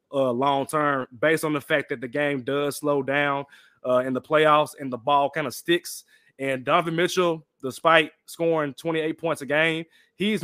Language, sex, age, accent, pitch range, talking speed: English, male, 20-39, American, 135-180 Hz, 185 wpm